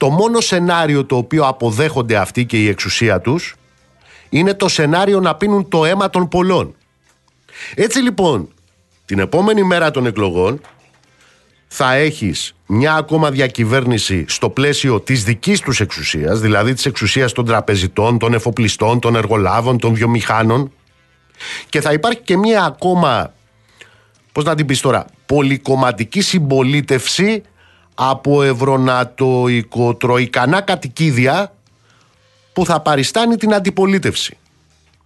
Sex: male